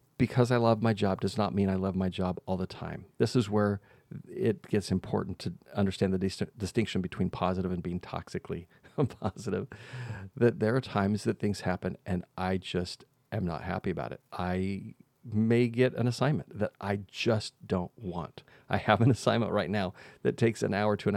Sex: male